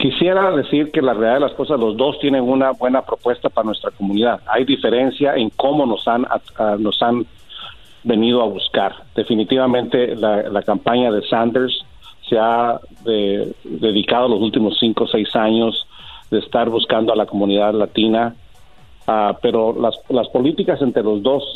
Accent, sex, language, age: Mexican, male, Spanish, 50-69